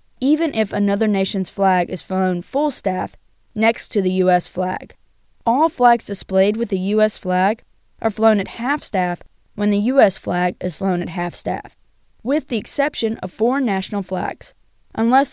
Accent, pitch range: American, 185-235 Hz